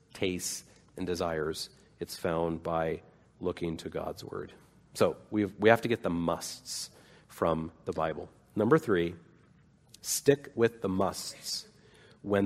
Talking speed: 130 wpm